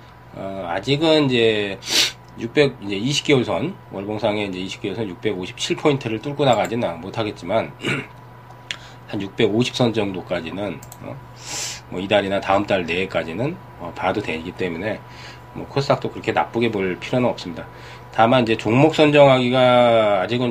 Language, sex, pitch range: Korean, male, 95-125 Hz